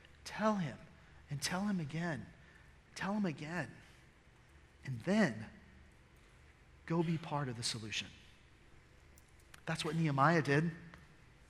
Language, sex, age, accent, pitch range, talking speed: English, male, 40-59, American, 135-200 Hz, 110 wpm